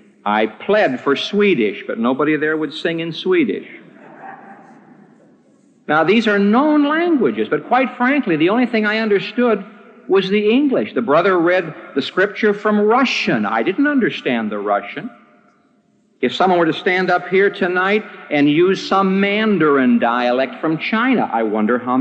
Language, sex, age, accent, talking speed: English, male, 50-69, American, 155 wpm